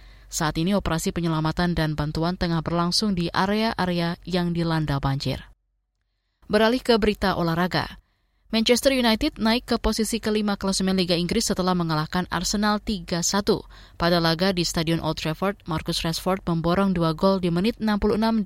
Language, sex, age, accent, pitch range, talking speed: Indonesian, female, 20-39, native, 160-200 Hz, 145 wpm